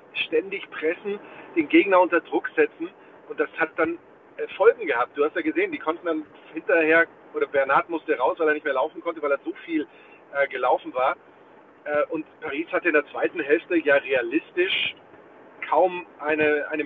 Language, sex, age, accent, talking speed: German, male, 40-59, German, 180 wpm